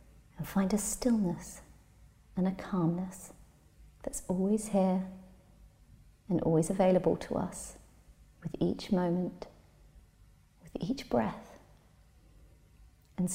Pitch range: 155-200 Hz